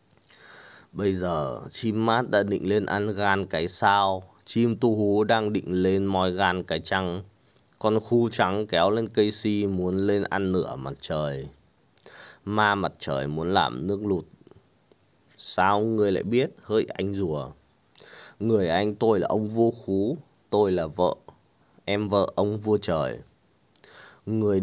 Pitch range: 90-105 Hz